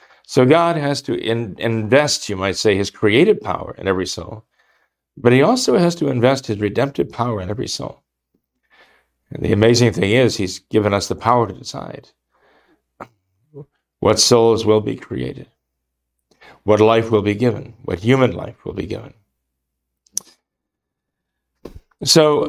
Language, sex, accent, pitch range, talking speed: English, male, American, 95-130 Hz, 145 wpm